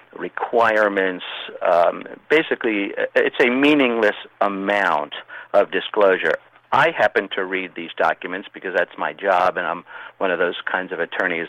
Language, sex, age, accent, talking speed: English, male, 50-69, American, 140 wpm